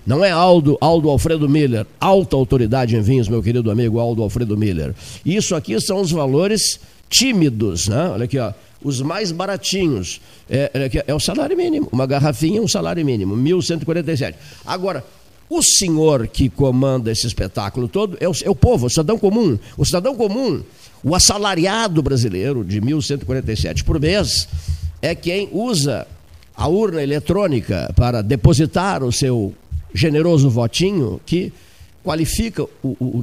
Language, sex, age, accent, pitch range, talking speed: Portuguese, male, 50-69, Brazilian, 105-165 Hz, 155 wpm